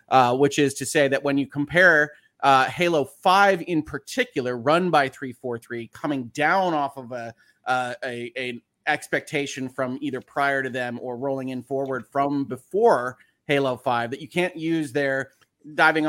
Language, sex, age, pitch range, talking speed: English, male, 30-49, 125-150 Hz, 170 wpm